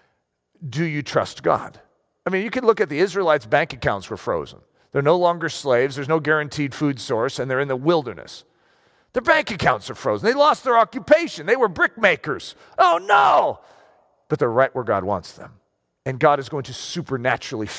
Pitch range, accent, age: 130-210 Hz, American, 40-59